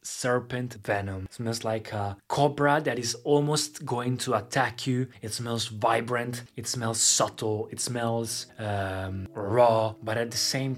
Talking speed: 150 wpm